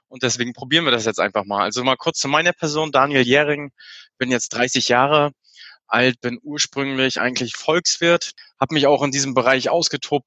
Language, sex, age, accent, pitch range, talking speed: German, male, 20-39, German, 125-140 Hz, 195 wpm